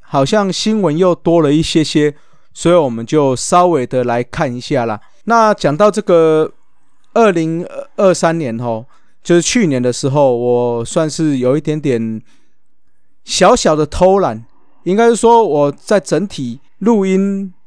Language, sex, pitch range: Chinese, male, 135-180 Hz